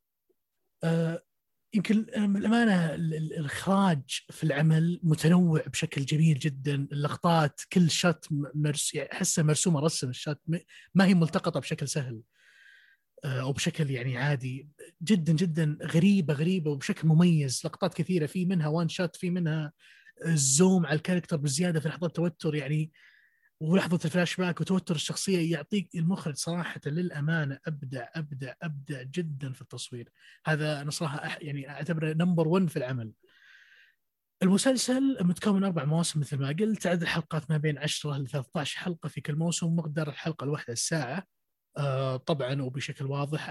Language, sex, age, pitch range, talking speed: Arabic, male, 30-49, 145-175 Hz, 140 wpm